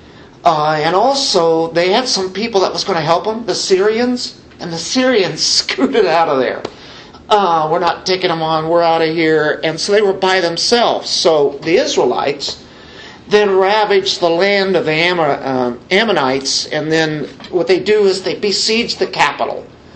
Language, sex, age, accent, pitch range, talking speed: English, male, 50-69, American, 145-210 Hz, 175 wpm